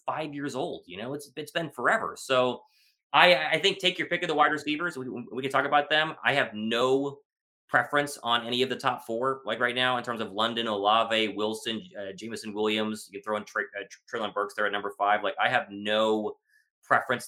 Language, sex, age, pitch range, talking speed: English, male, 20-39, 110-150 Hz, 220 wpm